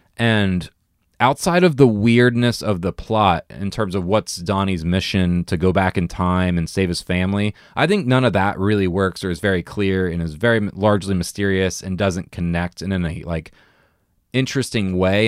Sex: male